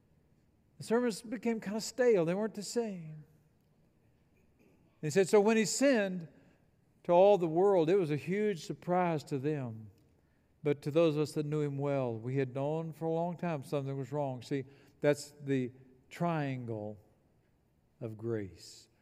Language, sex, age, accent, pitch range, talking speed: English, male, 60-79, American, 125-165 Hz, 165 wpm